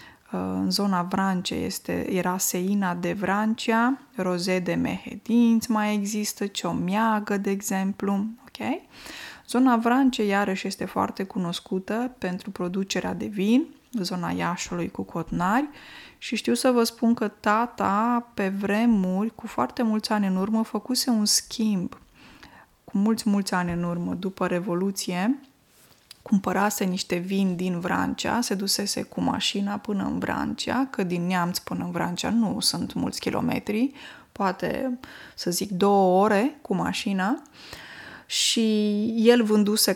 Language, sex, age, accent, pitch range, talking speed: Romanian, female, 20-39, native, 185-235 Hz, 135 wpm